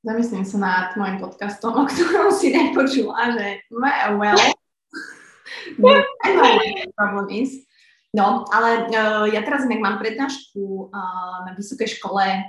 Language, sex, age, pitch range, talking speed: Slovak, female, 20-39, 215-255 Hz, 105 wpm